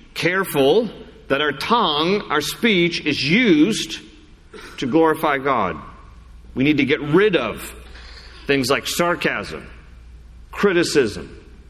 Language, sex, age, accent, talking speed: English, male, 50-69, American, 110 wpm